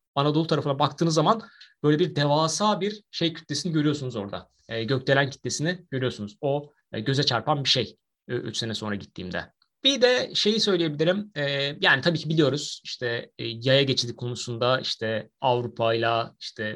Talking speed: 160 wpm